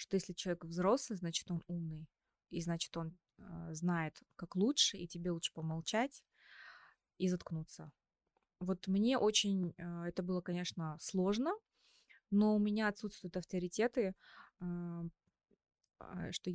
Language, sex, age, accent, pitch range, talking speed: Russian, female, 20-39, native, 170-195 Hz, 115 wpm